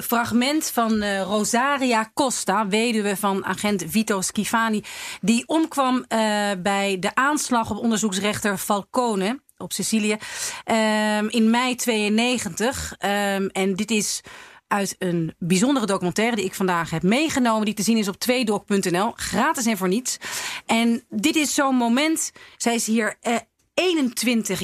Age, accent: 40-59, Dutch